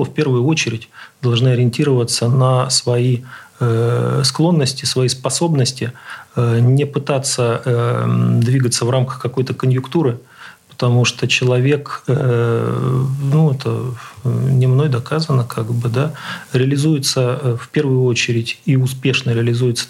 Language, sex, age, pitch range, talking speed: Russian, male, 40-59, 115-135 Hz, 105 wpm